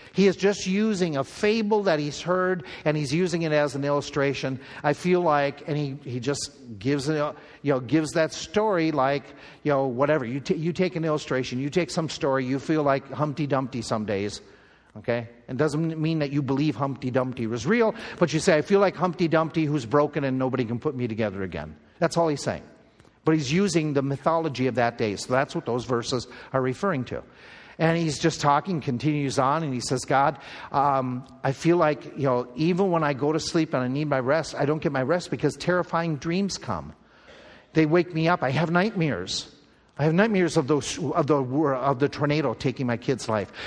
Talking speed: 210 wpm